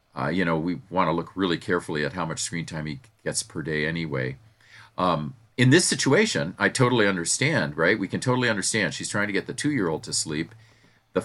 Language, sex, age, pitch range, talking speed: English, male, 40-59, 75-100 Hz, 215 wpm